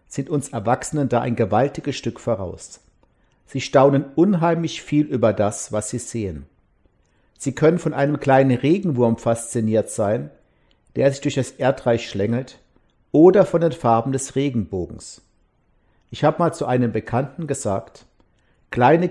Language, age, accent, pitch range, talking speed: German, 50-69, German, 105-140 Hz, 140 wpm